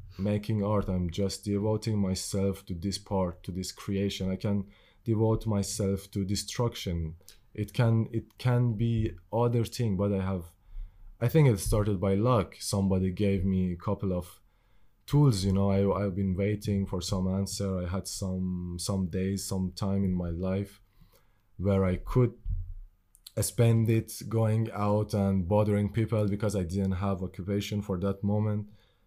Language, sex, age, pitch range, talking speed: English, male, 20-39, 95-105 Hz, 160 wpm